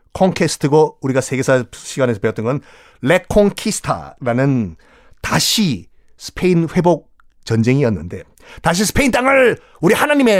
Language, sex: Korean, male